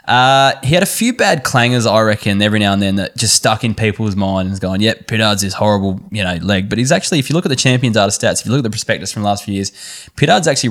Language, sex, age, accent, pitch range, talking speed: English, male, 10-29, Australian, 100-120 Hz, 285 wpm